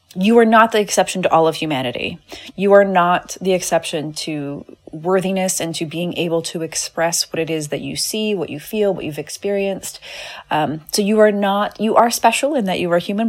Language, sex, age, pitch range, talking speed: English, female, 30-49, 165-200 Hz, 210 wpm